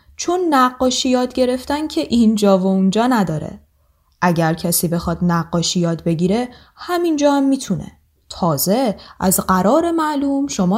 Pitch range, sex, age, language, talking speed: 160-260 Hz, female, 10-29, Persian, 130 wpm